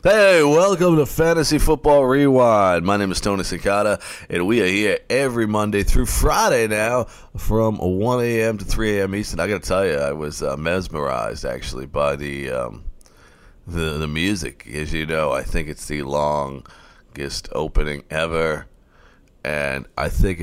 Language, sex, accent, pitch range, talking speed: English, male, American, 80-105 Hz, 160 wpm